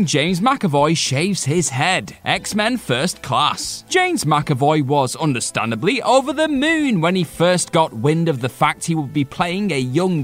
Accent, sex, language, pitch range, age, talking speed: British, male, English, 140-220 Hz, 30-49, 170 wpm